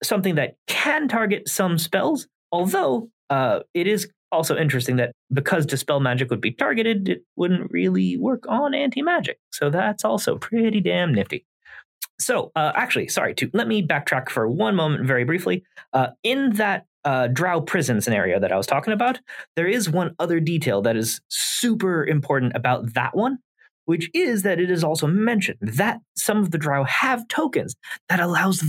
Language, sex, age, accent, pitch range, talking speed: English, male, 30-49, American, 145-220 Hz, 175 wpm